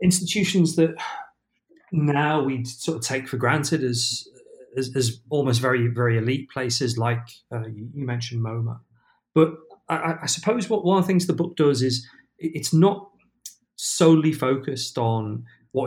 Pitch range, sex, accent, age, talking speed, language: 115-145 Hz, male, British, 30-49, 160 wpm, English